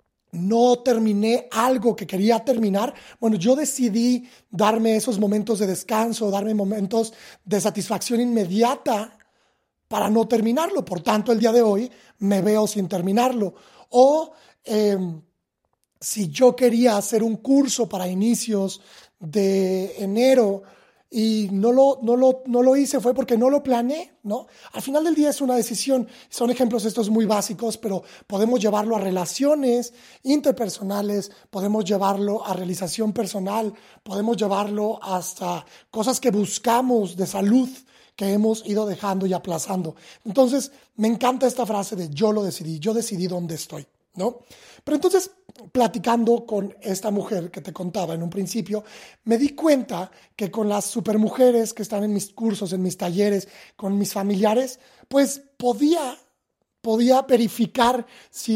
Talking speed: 150 wpm